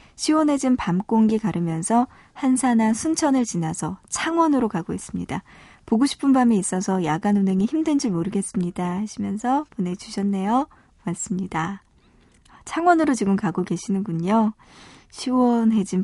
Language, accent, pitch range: Korean, native, 185-255 Hz